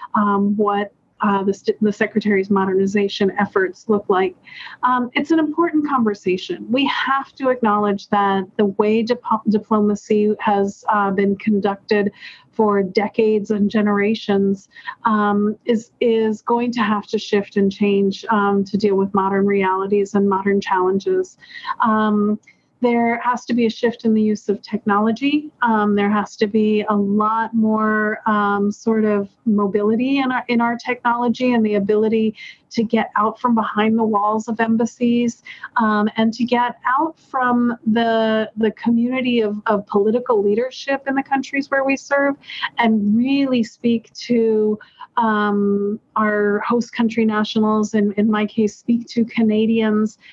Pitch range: 205-235 Hz